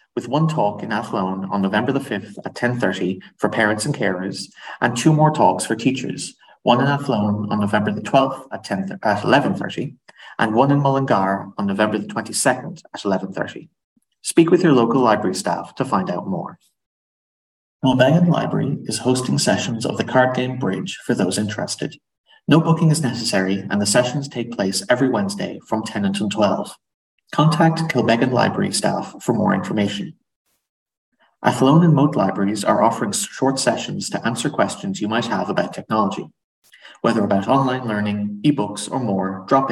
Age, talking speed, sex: 30-49, 170 wpm, male